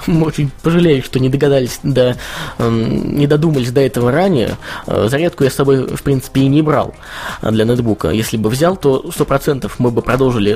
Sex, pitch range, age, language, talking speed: male, 115-145 Hz, 20-39, Russian, 190 wpm